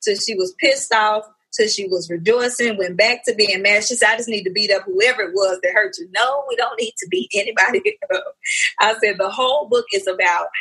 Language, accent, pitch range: English, American, 190-245 Hz